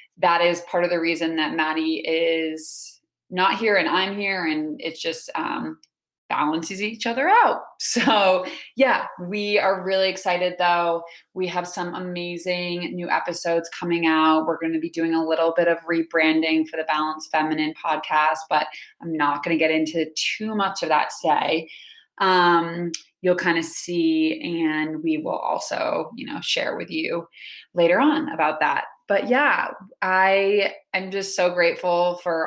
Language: English